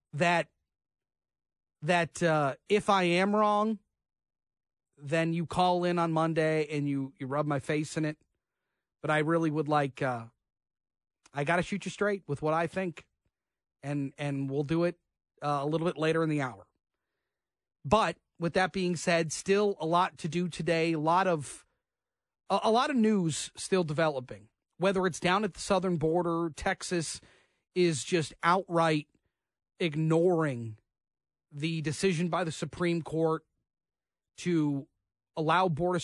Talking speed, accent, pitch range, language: 155 wpm, American, 145-180 Hz, English